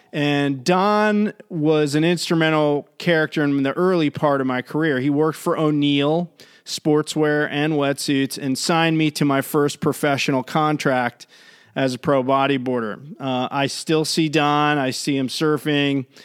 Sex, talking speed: male, 150 wpm